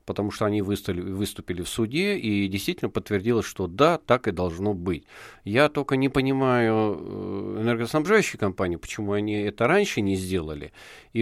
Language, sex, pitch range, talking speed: Russian, male, 95-125 Hz, 150 wpm